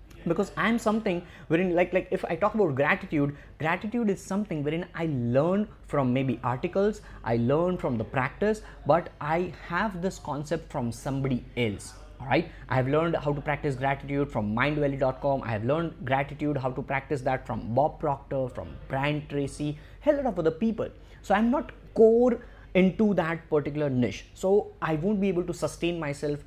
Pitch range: 130-170 Hz